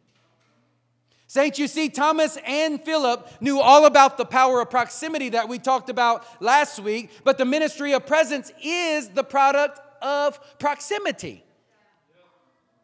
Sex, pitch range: male, 185-280 Hz